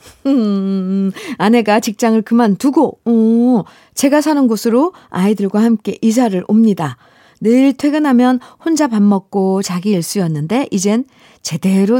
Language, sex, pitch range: Korean, female, 185-270 Hz